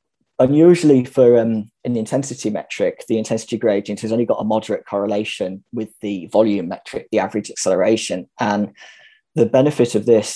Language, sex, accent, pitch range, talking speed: English, male, British, 105-125 Hz, 155 wpm